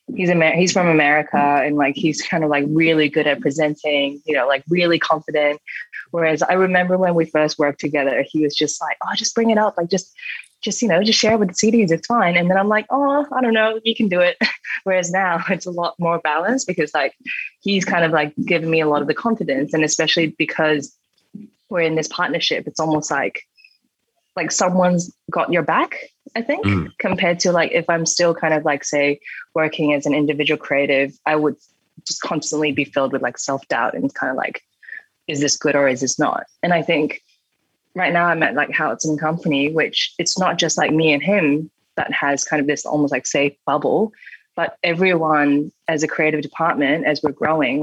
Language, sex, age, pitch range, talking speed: English, female, 20-39, 150-185 Hz, 215 wpm